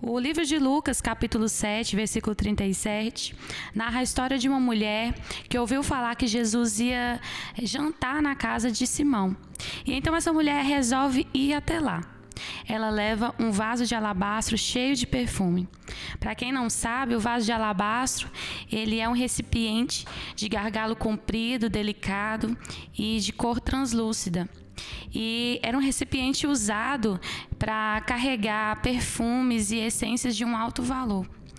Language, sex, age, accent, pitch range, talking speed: Portuguese, female, 10-29, Brazilian, 215-255 Hz, 140 wpm